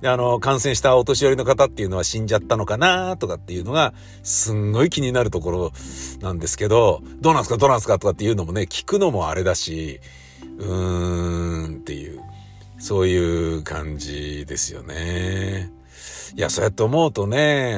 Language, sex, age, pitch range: Japanese, male, 50-69, 90-145 Hz